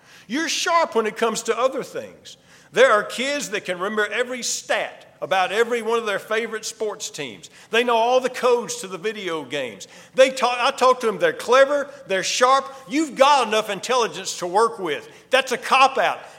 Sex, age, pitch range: male, 50-69, 170-245 Hz